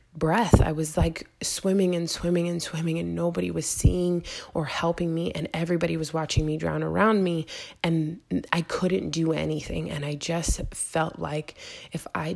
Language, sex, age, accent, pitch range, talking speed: English, female, 20-39, American, 145-175 Hz, 175 wpm